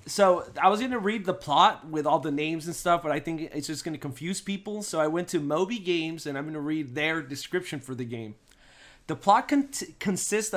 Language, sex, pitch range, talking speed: English, male, 150-190 Hz, 240 wpm